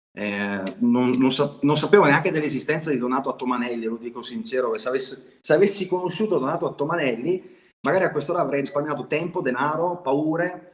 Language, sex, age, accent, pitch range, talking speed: Italian, male, 30-49, native, 125-180 Hz, 160 wpm